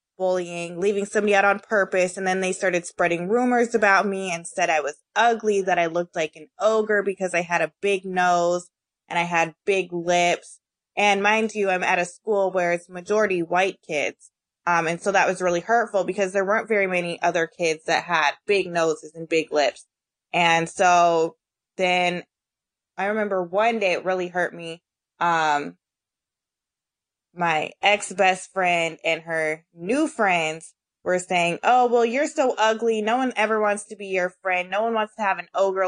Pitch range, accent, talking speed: 170-200 Hz, American, 185 wpm